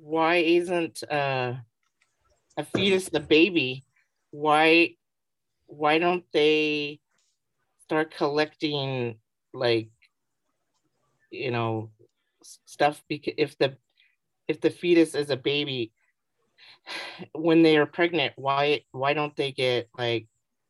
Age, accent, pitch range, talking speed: 50-69, American, 130-165 Hz, 105 wpm